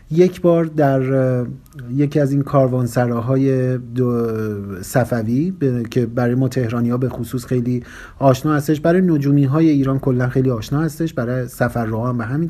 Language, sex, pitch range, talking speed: Persian, male, 125-150 Hz, 150 wpm